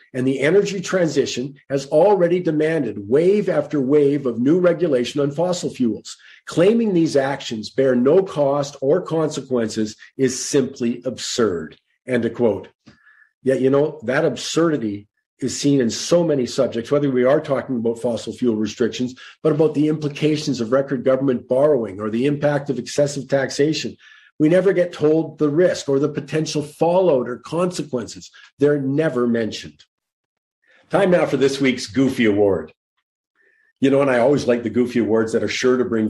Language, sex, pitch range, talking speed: English, male, 120-150 Hz, 165 wpm